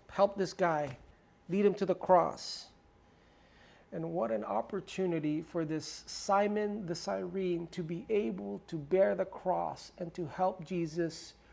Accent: American